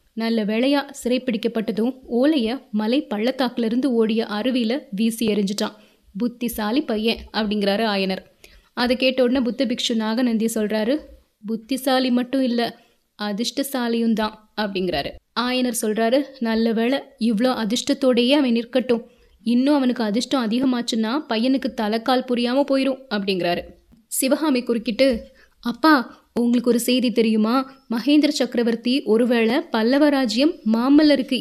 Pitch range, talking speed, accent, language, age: 220-260 Hz, 105 wpm, native, Tamil, 20-39